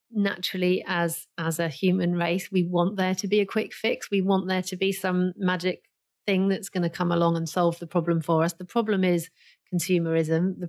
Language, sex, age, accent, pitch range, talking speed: English, female, 40-59, British, 165-190 Hz, 215 wpm